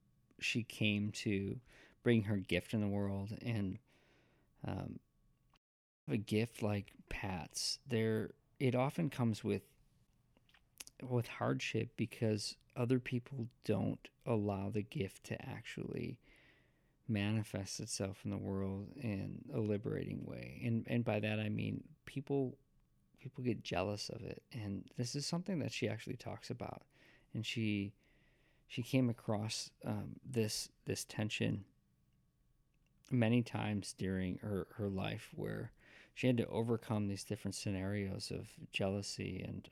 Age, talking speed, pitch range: 40-59, 130 wpm, 100-125 Hz